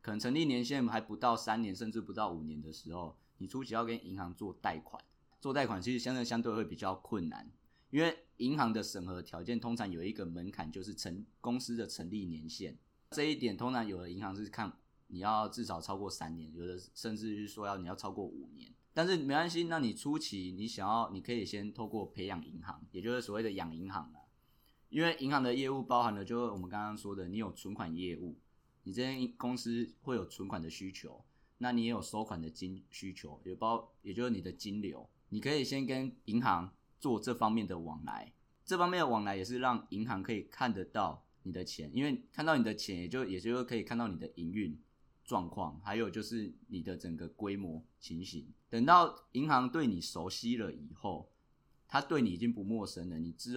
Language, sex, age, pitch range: Chinese, male, 20-39, 95-120 Hz